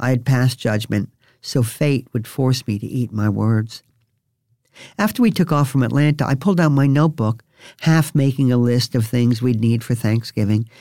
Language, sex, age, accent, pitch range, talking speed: English, male, 50-69, American, 115-145 Hz, 190 wpm